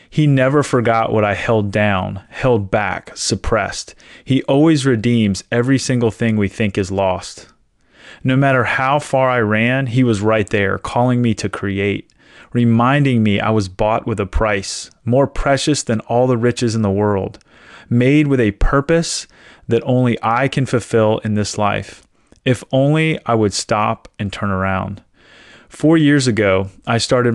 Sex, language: male, English